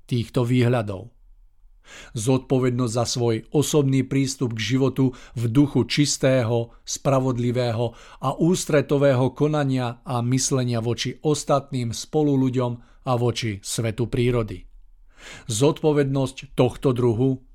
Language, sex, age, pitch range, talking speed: Czech, male, 50-69, 115-135 Hz, 100 wpm